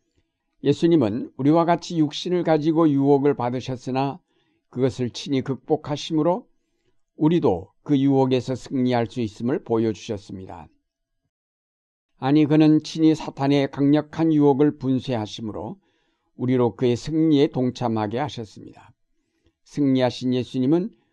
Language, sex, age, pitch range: Korean, male, 60-79, 120-150 Hz